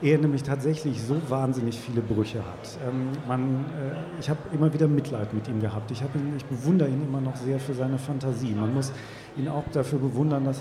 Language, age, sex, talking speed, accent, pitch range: German, 40-59, male, 210 wpm, German, 130-150 Hz